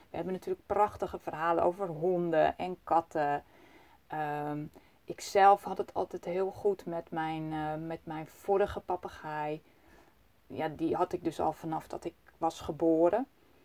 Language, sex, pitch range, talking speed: Dutch, female, 155-195 Hz, 145 wpm